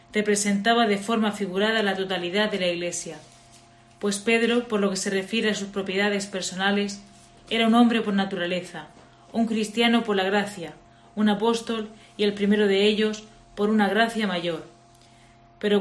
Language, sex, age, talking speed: Spanish, female, 30-49, 160 wpm